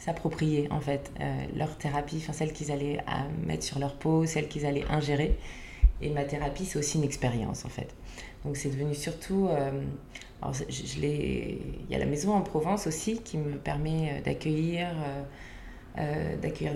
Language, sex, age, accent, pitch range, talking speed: French, female, 20-39, French, 145-175 Hz, 185 wpm